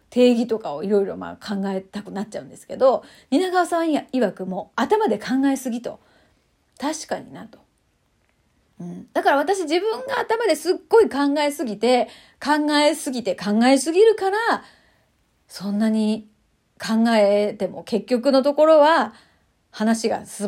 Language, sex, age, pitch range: Japanese, female, 30-49, 215-320 Hz